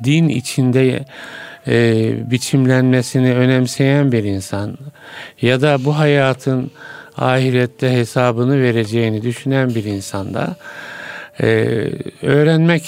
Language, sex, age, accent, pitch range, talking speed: Turkish, male, 50-69, native, 115-145 Hz, 90 wpm